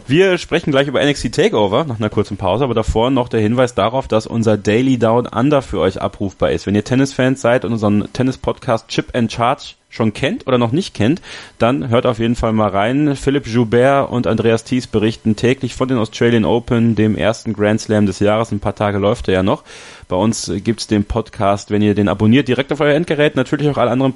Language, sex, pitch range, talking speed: German, male, 110-135 Hz, 225 wpm